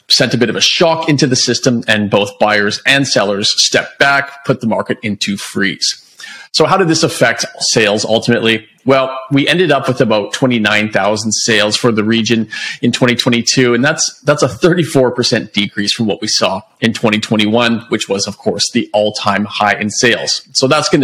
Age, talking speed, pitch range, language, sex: 30-49, 185 wpm, 105-135 Hz, English, male